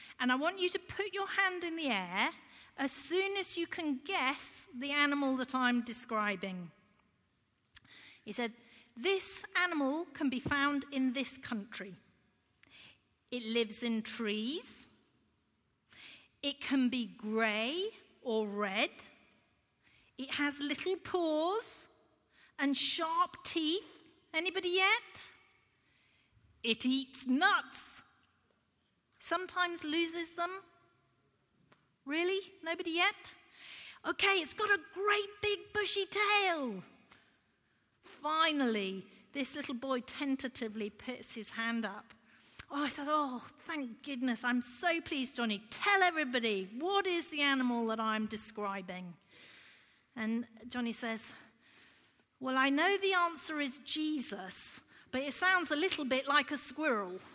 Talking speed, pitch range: 120 wpm, 240-350 Hz